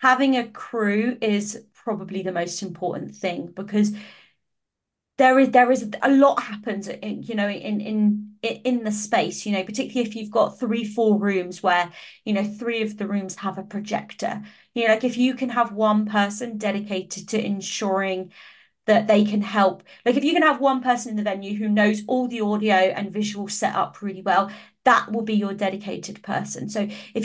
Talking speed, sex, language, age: 195 wpm, female, English, 30-49